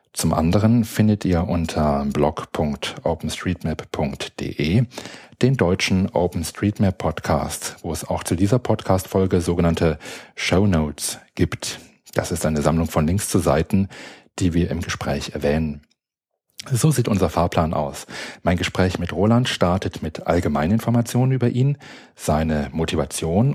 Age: 40-59